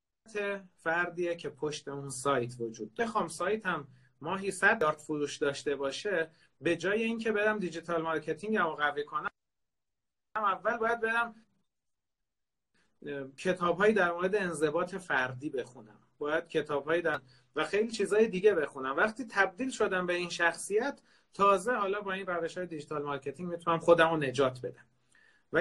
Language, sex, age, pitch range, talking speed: Persian, male, 40-59, 145-200 Hz, 140 wpm